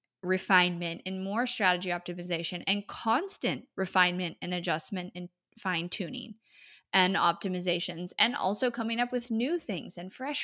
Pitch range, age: 180-220 Hz, 20-39